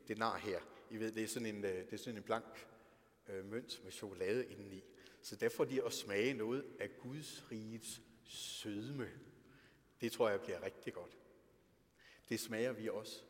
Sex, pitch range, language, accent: male, 110-165 Hz, Danish, native